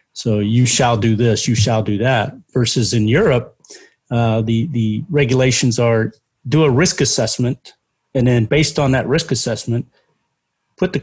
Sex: male